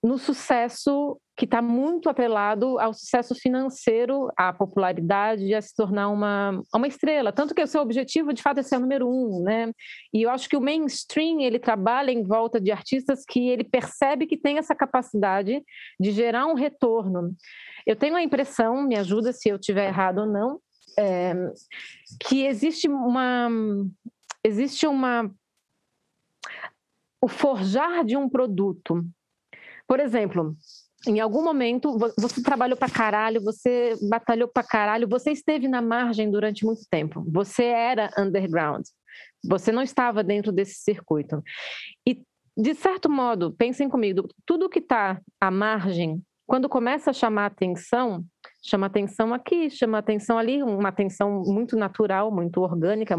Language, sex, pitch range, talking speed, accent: Portuguese, female, 205-265 Hz, 150 wpm, Brazilian